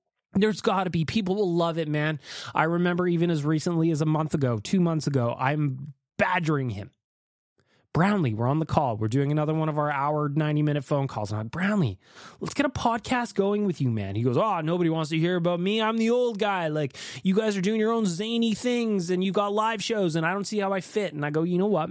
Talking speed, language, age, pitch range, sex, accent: 245 wpm, English, 20-39, 145-200 Hz, male, American